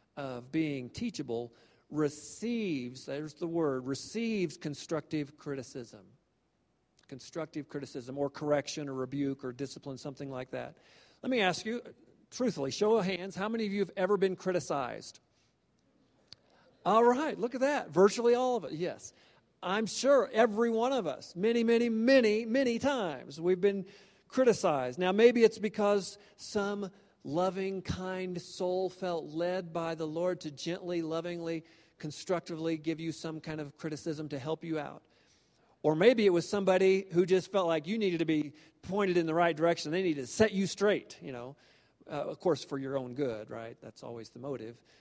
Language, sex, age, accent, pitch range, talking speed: English, male, 50-69, American, 150-200 Hz, 170 wpm